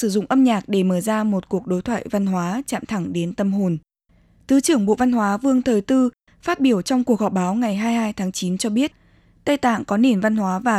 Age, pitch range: 20-39, 205-250 Hz